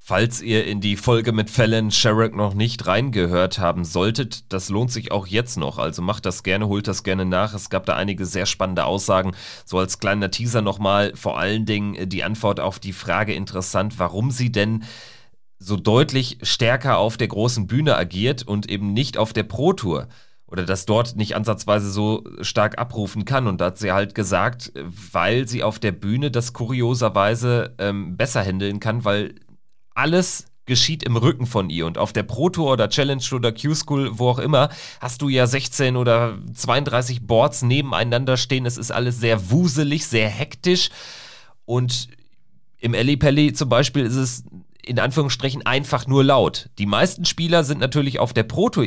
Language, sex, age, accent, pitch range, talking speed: German, male, 30-49, German, 100-130 Hz, 180 wpm